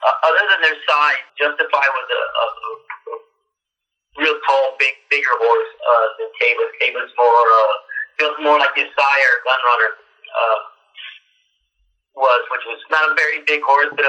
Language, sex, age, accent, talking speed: English, male, 50-69, American, 160 wpm